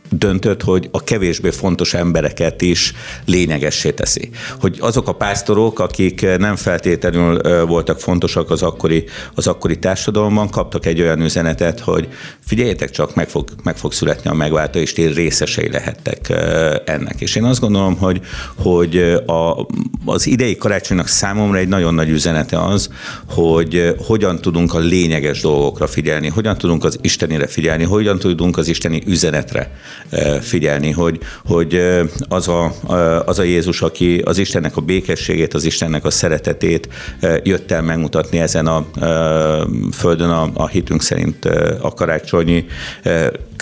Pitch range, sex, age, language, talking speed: 80-95 Hz, male, 50-69, Hungarian, 145 wpm